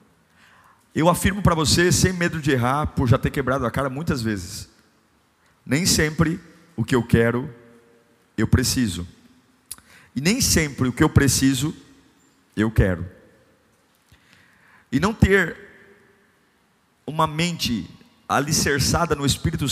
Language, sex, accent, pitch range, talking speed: Portuguese, male, Brazilian, 105-160 Hz, 125 wpm